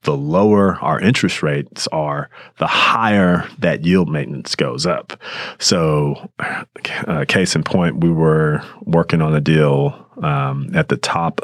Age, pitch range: 30-49, 70-80 Hz